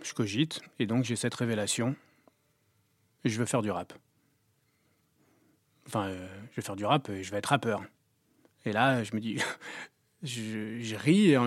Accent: French